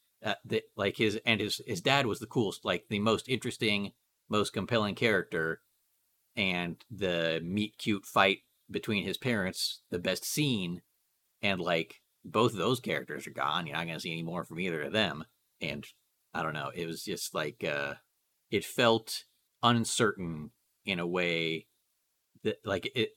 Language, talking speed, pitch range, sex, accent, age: English, 170 wpm, 85-115 Hz, male, American, 40-59